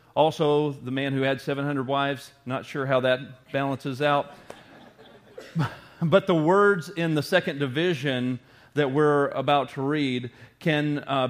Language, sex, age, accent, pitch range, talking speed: English, male, 40-59, American, 135-170 Hz, 145 wpm